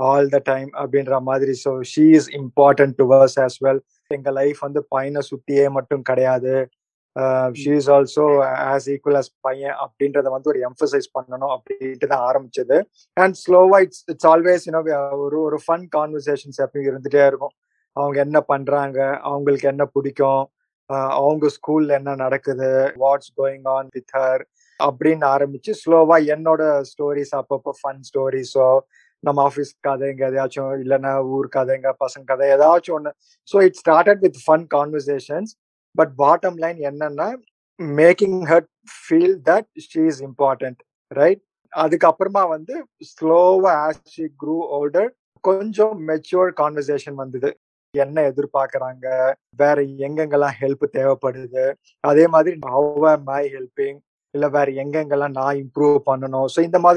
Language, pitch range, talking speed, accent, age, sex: Tamil, 135-160 Hz, 115 wpm, native, 20-39, male